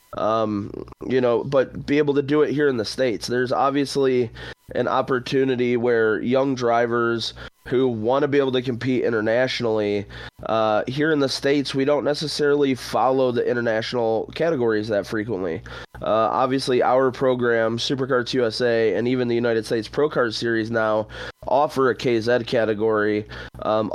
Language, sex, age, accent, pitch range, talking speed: English, male, 20-39, American, 115-135 Hz, 155 wpm